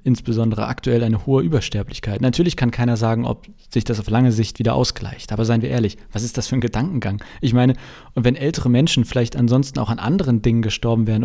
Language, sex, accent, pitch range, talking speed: German, male, German, 115-135 Hz, 220 wpm